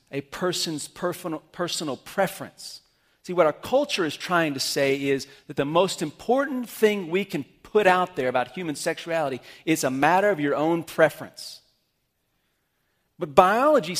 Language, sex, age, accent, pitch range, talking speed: English, male, 40-59, American, 140-195 Hz, 150 wpm